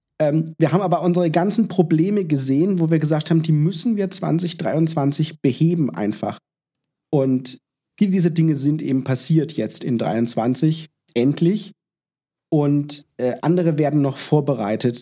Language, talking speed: German, 135 wpm